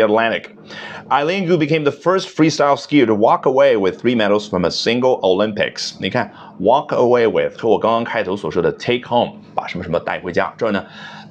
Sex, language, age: male, Chinese, 30-49